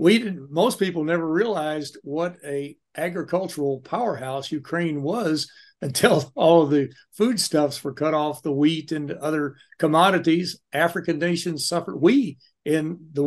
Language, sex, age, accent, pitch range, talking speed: English, male, 60-79, American, 145-175 Hz, 140 wpm